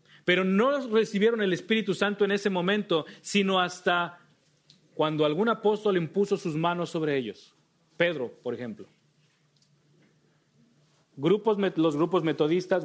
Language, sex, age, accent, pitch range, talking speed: English, male, 40-59, Mexican, 145-185 Hz, 120 wpm